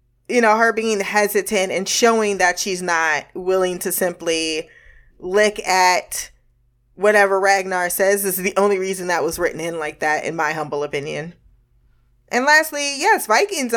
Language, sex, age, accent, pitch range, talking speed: English, female, 20-39, American, 170-210 Hz, 155 wpm